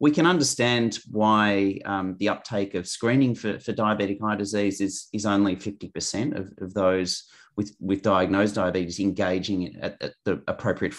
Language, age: English, 30-49